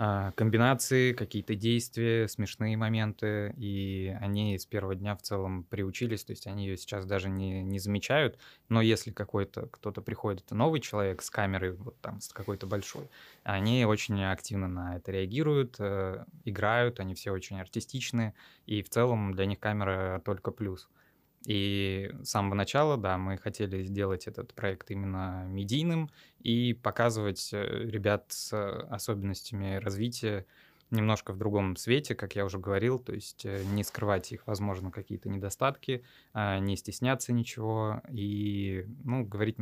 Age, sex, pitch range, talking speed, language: 20-39, male, 95-115 Hz, 145 wpm, Russian